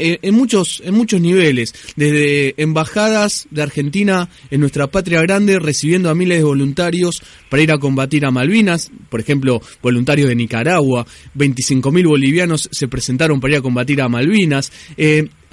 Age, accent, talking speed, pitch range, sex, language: 20-39, Argentinian, 155 wpm, 140-185 Hz, male, Spanish